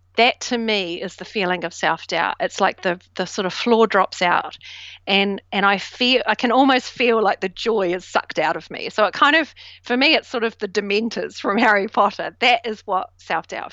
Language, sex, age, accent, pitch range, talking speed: English, female, 40-59, Australian, 195-245 Hz, 225 wpm